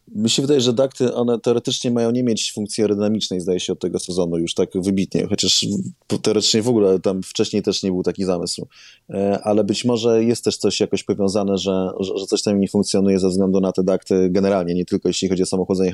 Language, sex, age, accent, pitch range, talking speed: Polish, male, 20-39, native, 95-110 Hz, 215 wpm